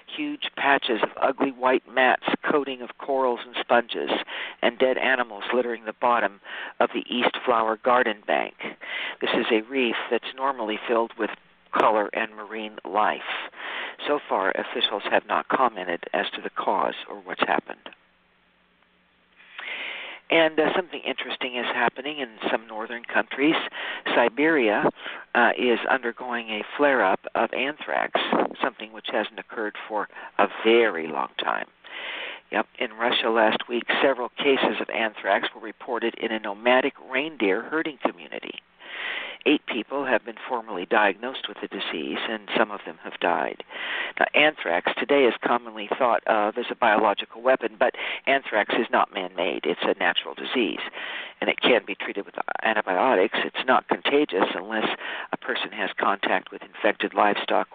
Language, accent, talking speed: English, American, 150 wpm